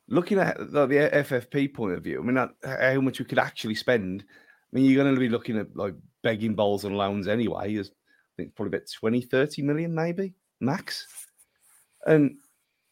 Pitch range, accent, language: 115-150 Hz, British, English